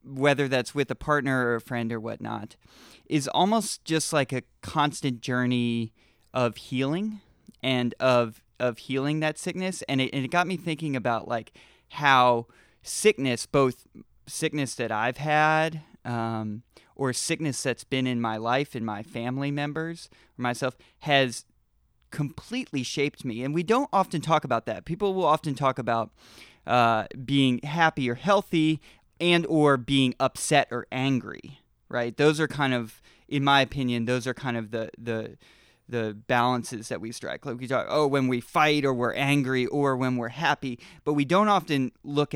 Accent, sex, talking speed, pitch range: American, male, 170 wpm, 120-150 Hz